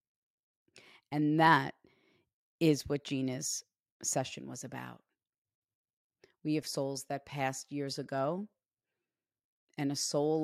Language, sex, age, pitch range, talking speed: English, female, 40-59, 145-175 Hz, 105 wpm